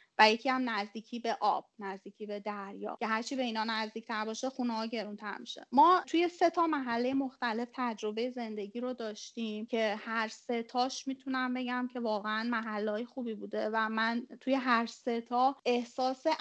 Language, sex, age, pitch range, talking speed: Persian, female, 30-49, 220-260 Hz, 165 wpm